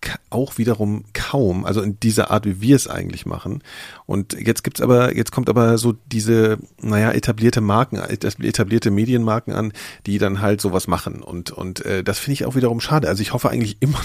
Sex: male